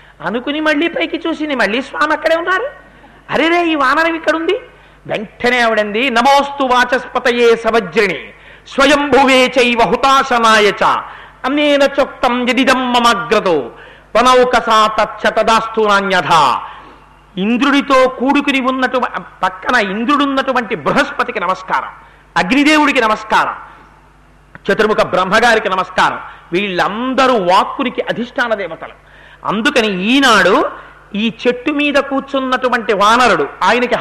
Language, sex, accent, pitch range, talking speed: Telugu, male, native, 220-275 Hz, 70 wpm